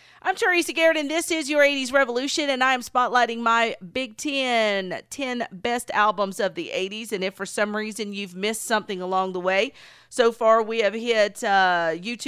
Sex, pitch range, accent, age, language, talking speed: female, 185-230 Hz, American, 40-59, English, 190 wpm